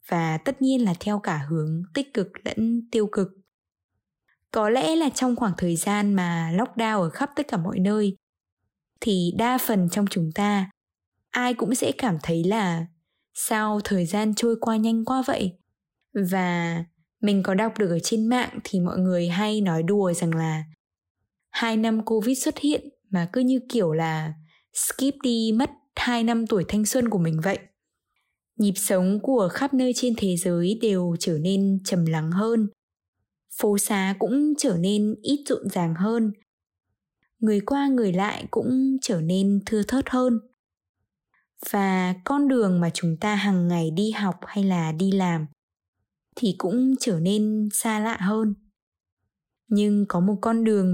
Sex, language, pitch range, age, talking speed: female, Vietnamese, 175-230 Hz, 10-29, 170 wpm